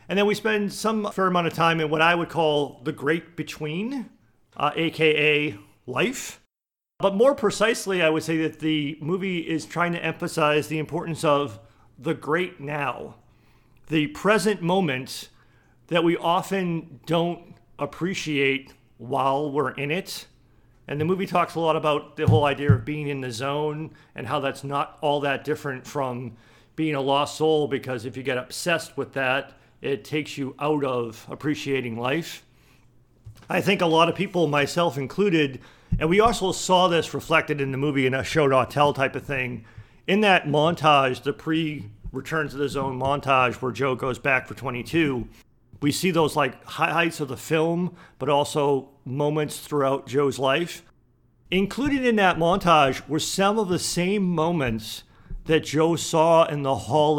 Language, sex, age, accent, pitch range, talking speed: English, male, 40-59, American, 135-170 Hz, 170 wpm